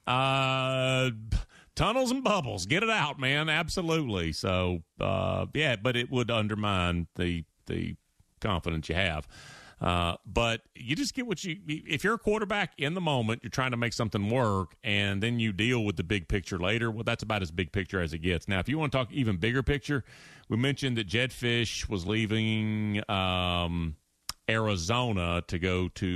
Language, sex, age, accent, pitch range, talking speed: English, male, 40-59, American, 95-150 Hz, 185 wpm